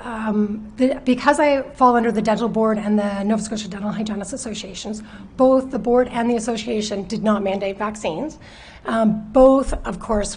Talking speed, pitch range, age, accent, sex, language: 170 wpm, 200-225 Hz, 30-49, American, female, English